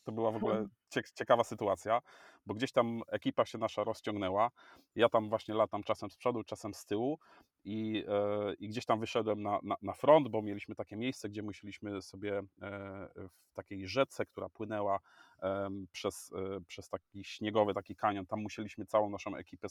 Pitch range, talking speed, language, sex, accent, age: 100-130 Hz, 180 wpm, Polish, male, native, 30-49